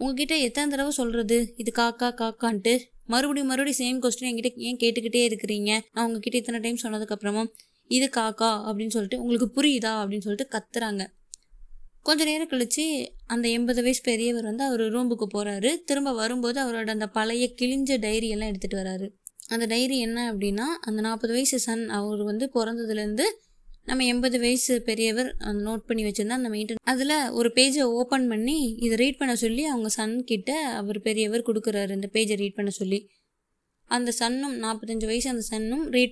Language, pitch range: Tamil, 220-255 Hz